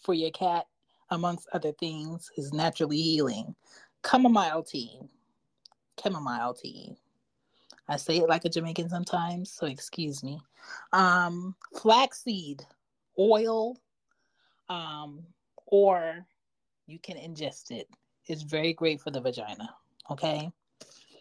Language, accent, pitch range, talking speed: English, American, 160-205 Hz, 110 wpm